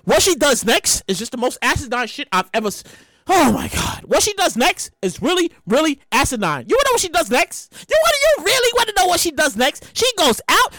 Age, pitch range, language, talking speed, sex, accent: 30-49, 225-370 Hz, English, 245 wpm, male, American